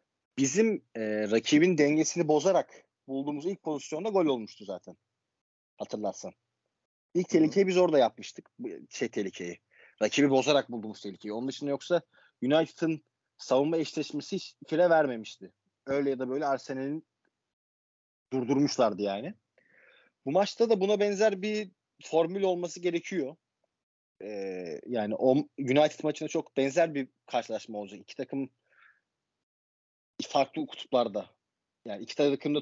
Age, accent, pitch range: 30-49, native, 125-180 Hz